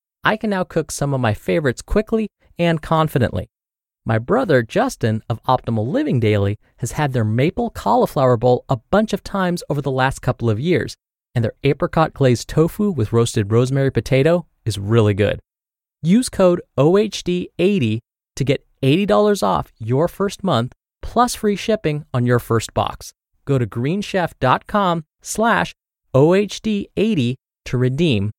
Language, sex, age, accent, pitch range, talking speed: English, male, 30-49, American, 120-180 Hz, 145 wpm